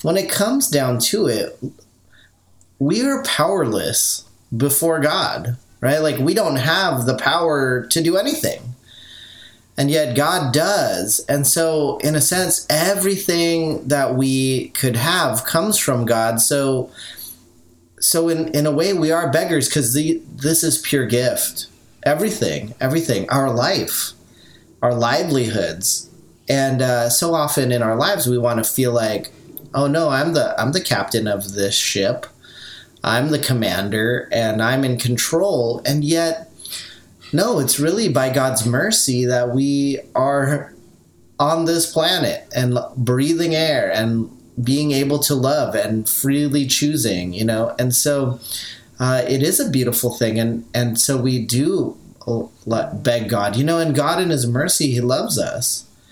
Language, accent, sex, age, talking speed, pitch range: English, American, male, 30-49, 150 wpm, 120-150 Hz